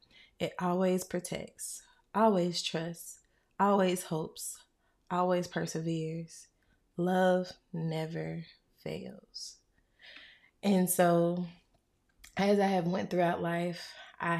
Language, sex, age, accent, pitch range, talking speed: English, female, 20-39, American, 165-185 Hz, 90 wpm